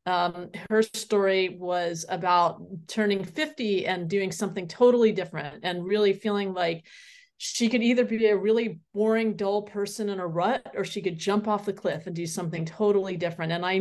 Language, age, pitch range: English, 30-49, 175-210 Hz